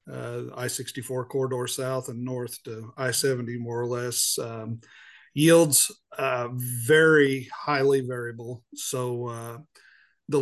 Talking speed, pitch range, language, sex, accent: 115 wpm, 120-135 Hz, English, male, American